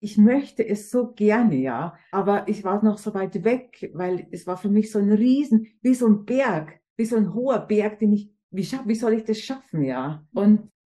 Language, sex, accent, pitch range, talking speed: German, female, German, 180-230 Hz, 225 wpm